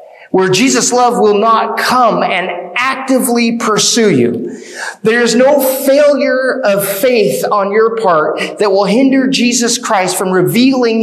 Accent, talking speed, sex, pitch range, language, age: American, 135 wpm, male, 160-240 Hz, English, 30-49